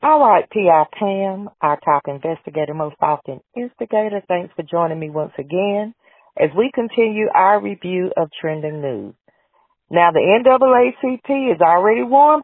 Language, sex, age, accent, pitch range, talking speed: English, female, 40-59, American, 140-185 Hz, 145 wpm